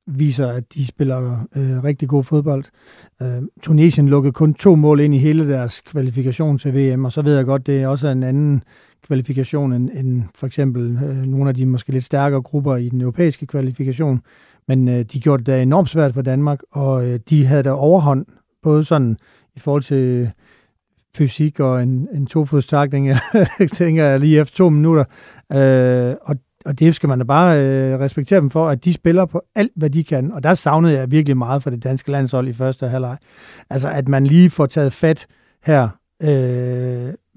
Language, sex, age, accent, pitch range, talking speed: Danish, male, 40-59, native, 130-155 Hz, 195 wpm